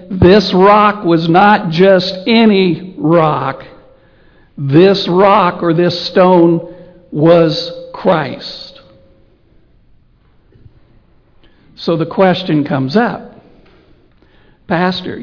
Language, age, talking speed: English, 60-79, 80 wpm